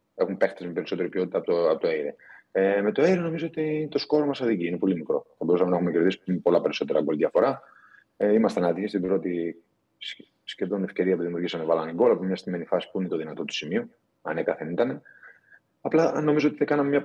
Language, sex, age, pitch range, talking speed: Greek, male, 30-49, 100-160 Hz, 210 wpm